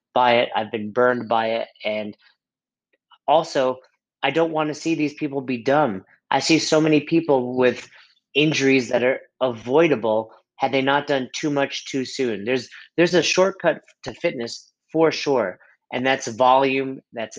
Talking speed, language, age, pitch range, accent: 165 wpm, English, 30-49, 115-135 Hz, American